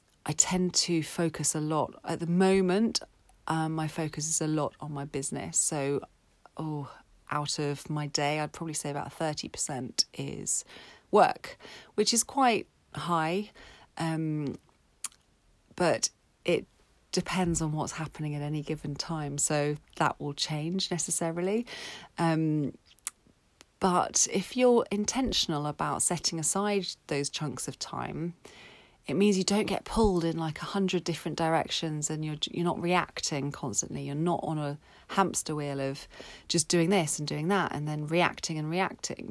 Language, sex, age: English, female, 40-59